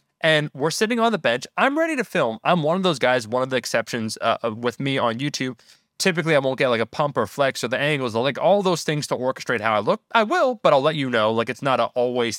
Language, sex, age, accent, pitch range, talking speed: English, male, 20-39, American, 125-200 Hz, 275 wpm